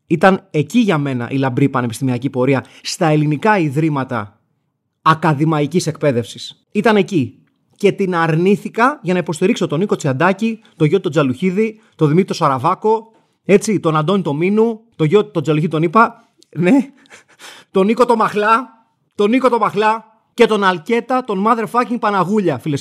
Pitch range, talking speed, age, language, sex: 150-205 Hz, 155 wpm, 30-49, Greek, male